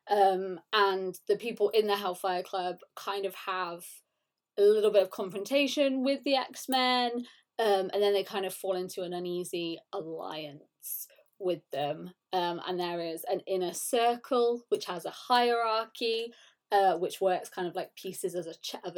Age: 20-39